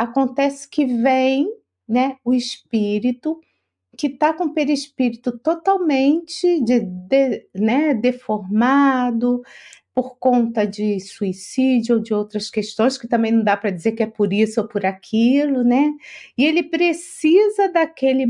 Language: Portuguese